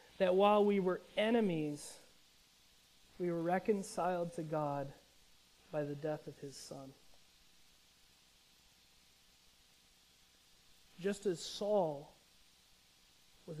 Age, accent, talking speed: 30-49, American, 90 wpm